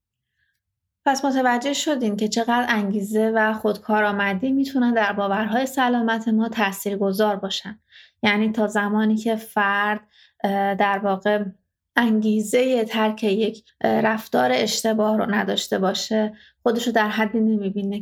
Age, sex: 30-49, female